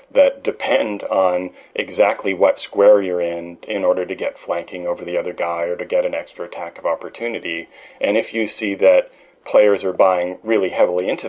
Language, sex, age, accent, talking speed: English, male, 40-59, American, 190 wpm